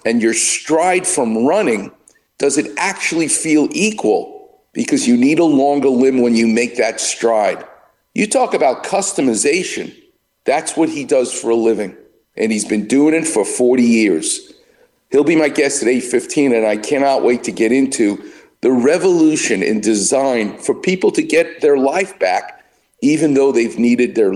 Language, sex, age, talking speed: English, male, 50-69, 170 wpm